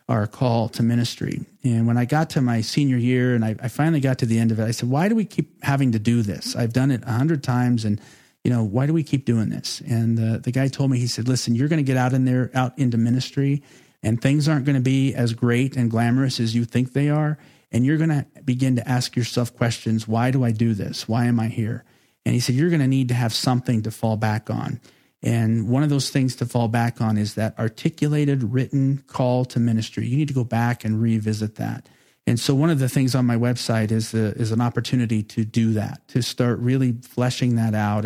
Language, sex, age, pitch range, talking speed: English, male, 40-59, 115-135 Hz, 250 wpm